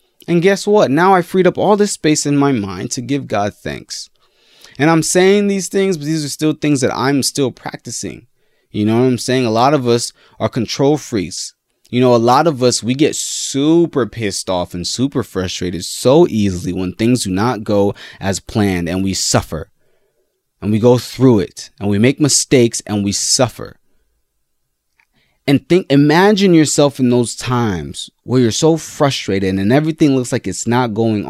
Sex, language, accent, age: male, English, American, 20-39